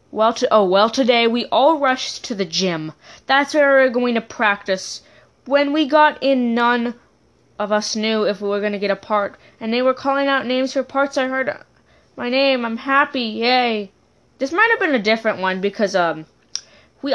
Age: 20-39